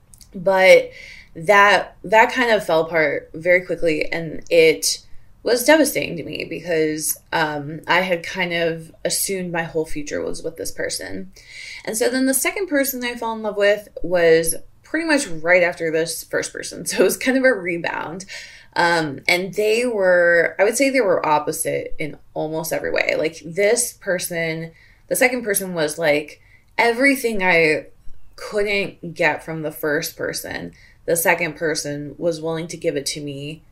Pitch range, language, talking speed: 160-210 Hz, English, 170 wpm